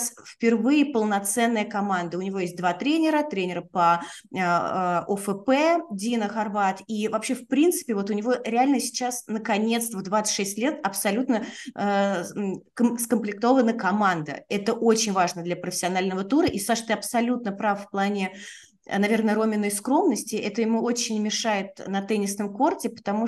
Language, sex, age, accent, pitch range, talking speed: Russian, female, 30-49, native, 195-235 Hz, 135 wpm